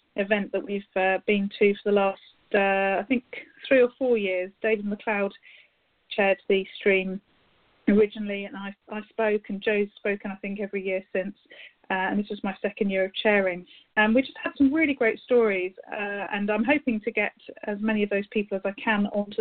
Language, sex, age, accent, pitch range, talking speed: English, female, 40-59, British, 200-220 Hz, 205 wpm